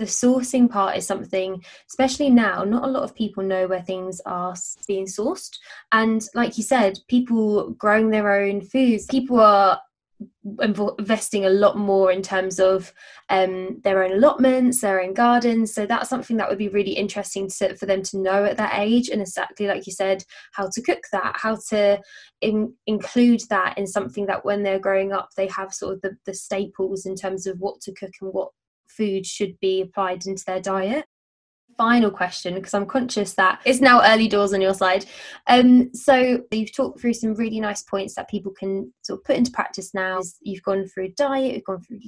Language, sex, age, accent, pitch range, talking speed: English, female, 10-29, British, 195-230 Hz, 195 wpm